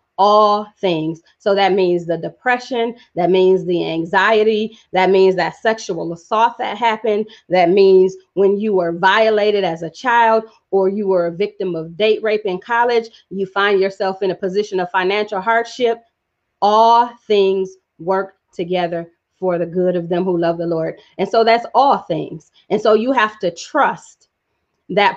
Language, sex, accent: English, female, American